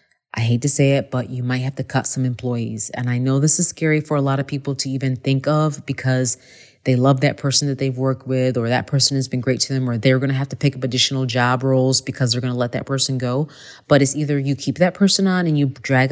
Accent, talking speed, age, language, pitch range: American, 280 wpm, 30-49, English, 130-155 Hz